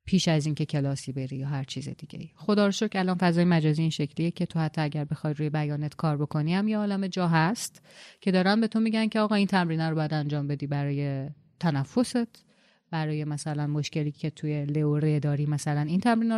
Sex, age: female, 30-49